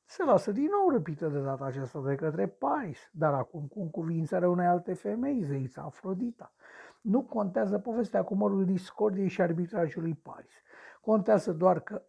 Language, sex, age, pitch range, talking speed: Romanian, male, 60-79, 150-220 Hz, 160 wpm